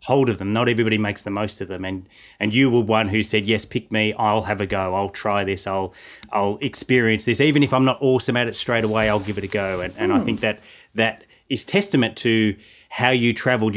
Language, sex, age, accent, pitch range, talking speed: English, male, 30-49, Australian, 100-125 Hz, 250 wpm